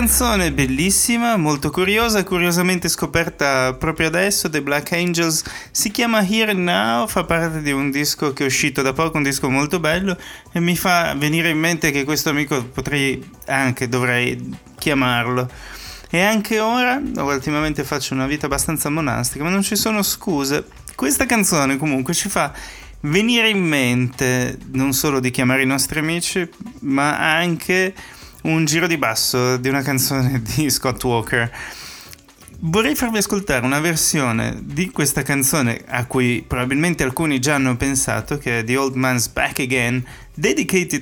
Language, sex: Italian, male